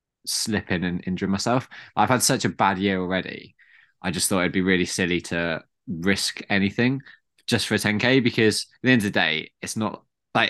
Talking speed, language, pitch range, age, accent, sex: 205 wpm, English, 95-110 Hz, 20-39, British, male